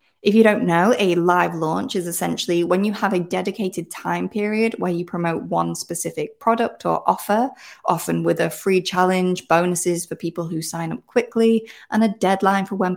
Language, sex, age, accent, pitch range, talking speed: English, female, 30-49, British, 175-225 Hz, 190 wpm